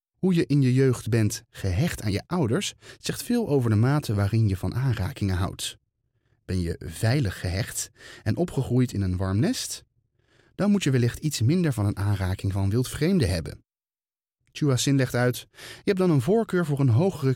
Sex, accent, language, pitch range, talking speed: male, Dutch, Dutch, 100-145 Hz, 185 wpm